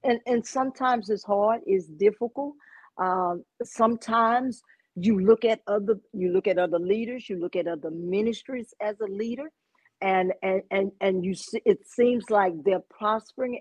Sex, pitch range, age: female, 200-255 Hz, 50-69